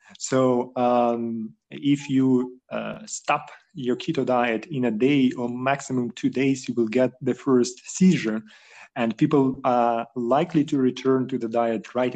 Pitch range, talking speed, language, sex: 120-135 Hz, 160 wpm, Ukrainian, male